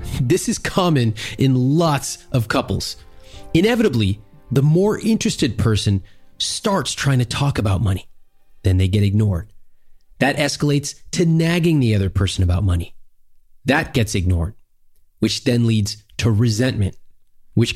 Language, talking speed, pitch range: English, 135 wpm, 100-145 Hz